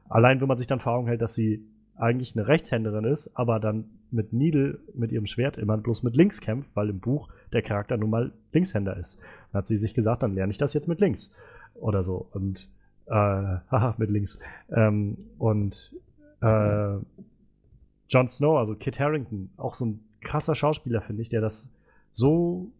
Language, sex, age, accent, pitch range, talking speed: German, male, 30-49, German, 105-125 Hz, 185 wpm